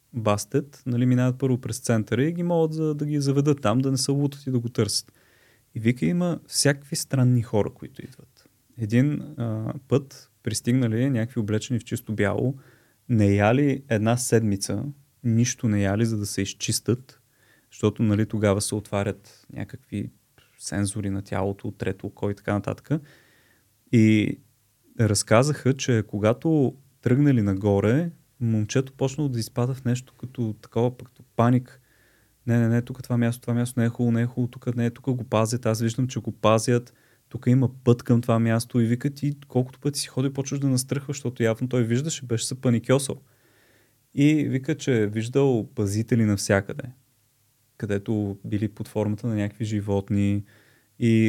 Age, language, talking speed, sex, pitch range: 30-49, Bulgarian, 165 wpm, male, 110-130 Hz